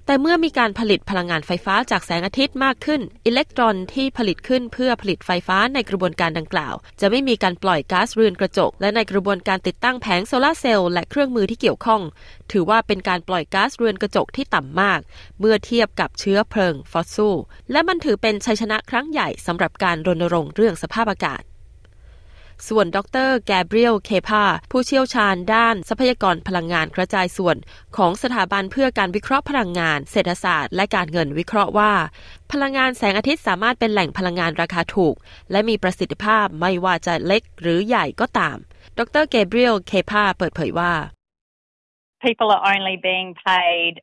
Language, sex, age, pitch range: Thai, female, 20-39, 180-235 Hz